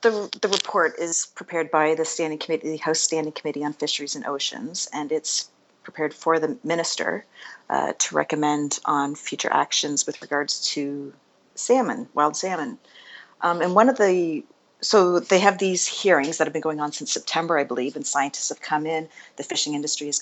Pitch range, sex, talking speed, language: 145-195 Hz, female, 185 wpm, English